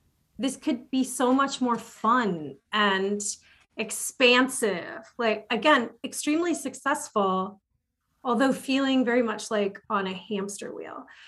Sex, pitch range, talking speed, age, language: female, 205-255 Hz, 115 wpm, 30-49, English